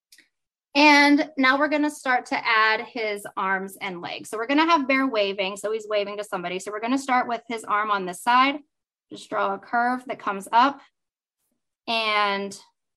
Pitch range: 195-235 Hz